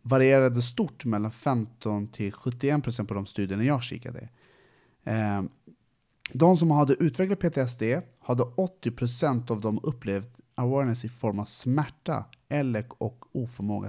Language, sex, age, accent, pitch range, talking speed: Swedish, male, 30-49, Norwegian, 115-145 Hz, 120 wpm